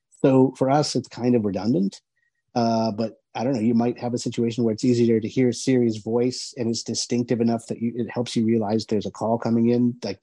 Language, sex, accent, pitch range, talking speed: English, male, American, 110-130 Hz, 230 wpm